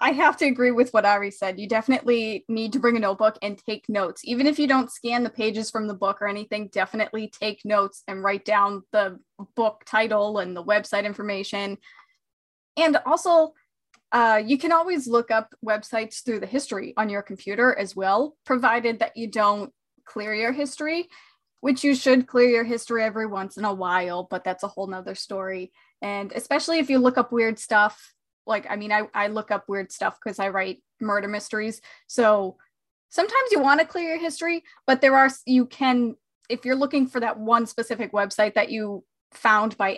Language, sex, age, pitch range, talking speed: English, female, 20-39, 205-255 Hz, 195 wpm